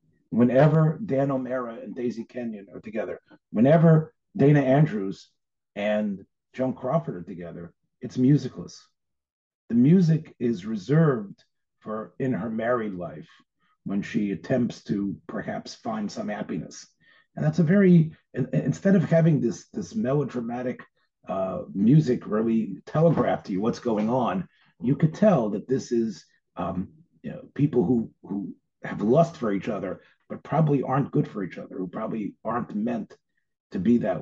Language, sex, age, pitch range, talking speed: English, male, 40-59, 115-160 Hz, 155 wpm